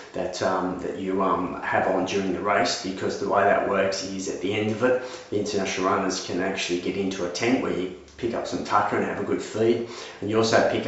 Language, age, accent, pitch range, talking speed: English, 30-49, Australian, 95-110 Hz, 250 wpm